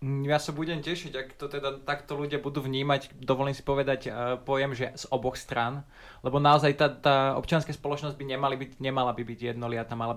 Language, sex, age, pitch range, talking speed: Slovak, male, 20-39, 125-145 Hz, 200 wpm